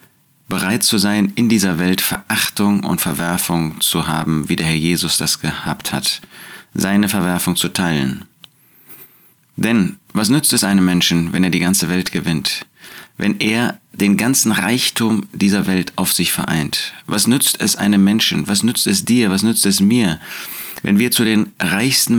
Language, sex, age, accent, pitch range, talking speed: German, male, 30-49, German, 90-115 Hz, 170 wpm